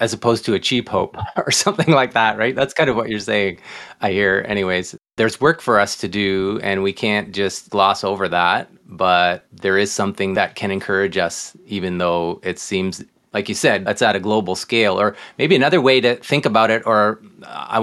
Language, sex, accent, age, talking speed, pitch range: English, male, American, 30-49, 210 wpm, 100-120 Hz